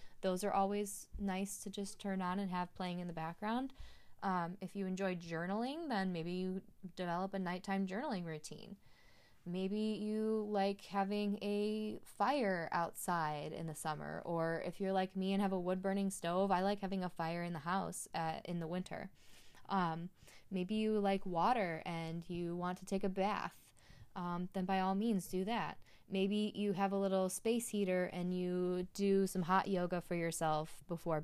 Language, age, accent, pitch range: English, 10-29, American, 180-205 Hz